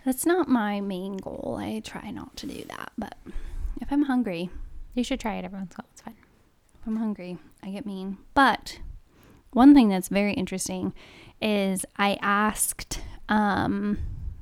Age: 10-29